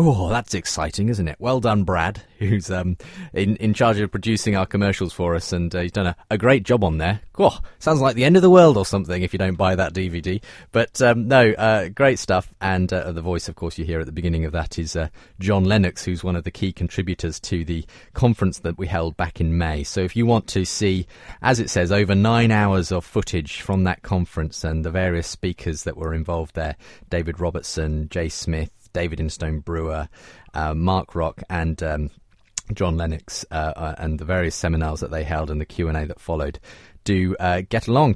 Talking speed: 220 wpm